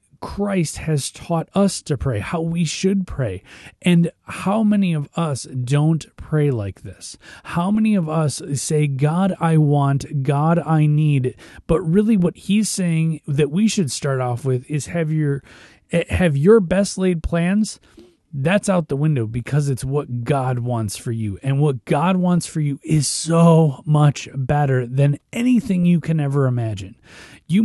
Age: 30-49